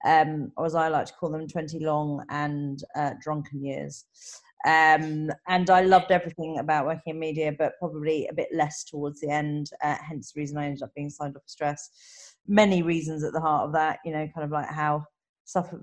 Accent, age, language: British, 30-49, English